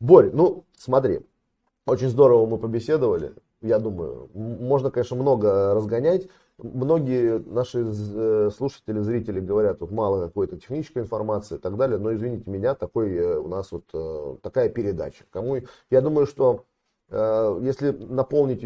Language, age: Russian, 30-49